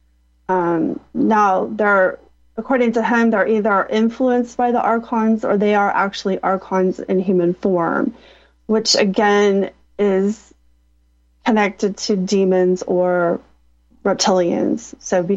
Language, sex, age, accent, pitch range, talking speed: English, female, 30-49, American, 175-220 Hz, 115 wpm